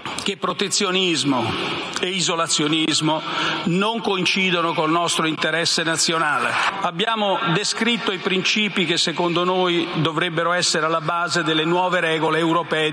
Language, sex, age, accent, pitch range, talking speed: Italian, male, 50-69, native, 165-195 Hz, 120 wpm